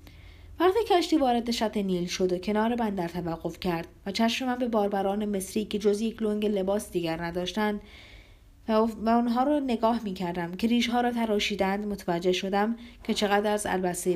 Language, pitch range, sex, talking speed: Persian, 180-220 Hz, female, 175 wpm